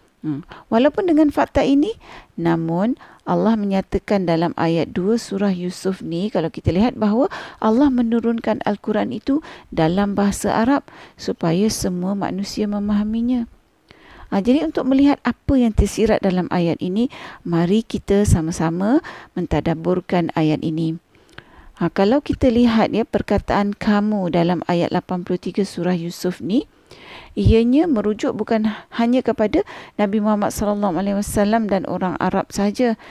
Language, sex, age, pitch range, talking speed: Malay, female, 40-59, 185-240 Hz, 130 wpm